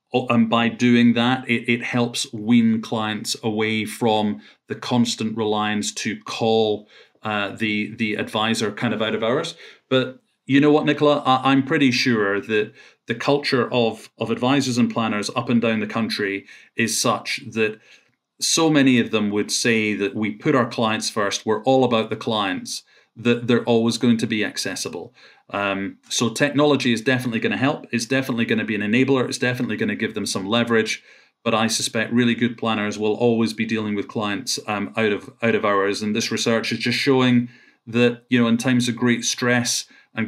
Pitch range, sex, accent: 110-125 Hz, male, British